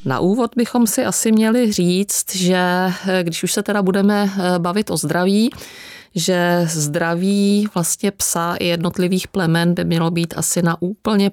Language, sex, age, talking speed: Czech, female, 30-49, 155 wpm